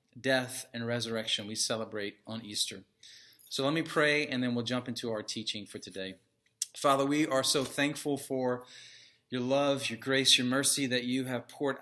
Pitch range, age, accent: 115-150 Hz, 40-59, American